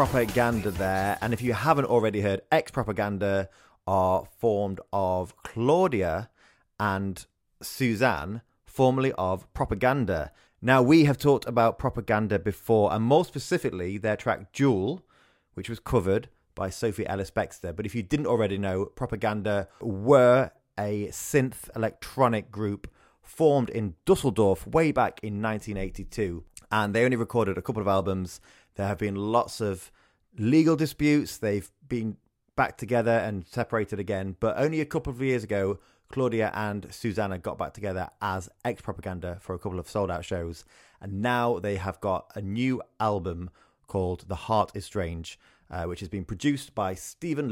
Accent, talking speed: British, 150 wpm